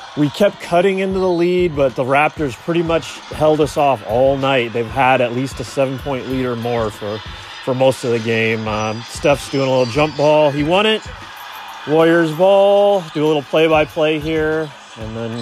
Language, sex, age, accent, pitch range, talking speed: English, male, 30-49, American, 120-165 Hz, 200 wpm